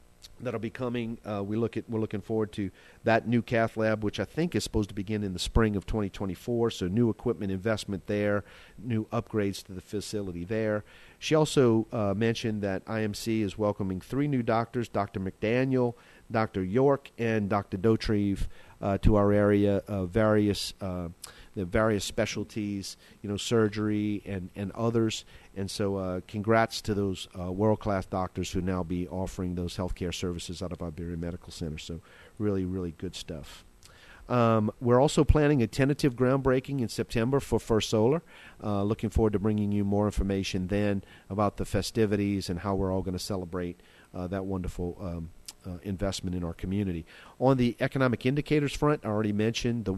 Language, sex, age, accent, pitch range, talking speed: English, male, 40-59, American, 95-115 Hz, 175 wpm